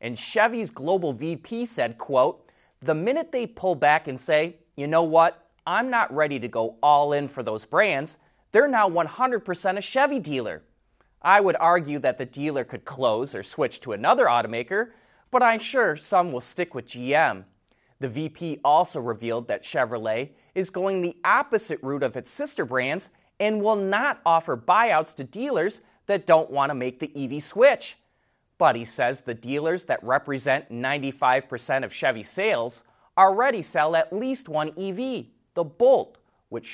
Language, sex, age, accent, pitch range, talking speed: English, male, 30-49, American, 135-205 Hz, 165 wpm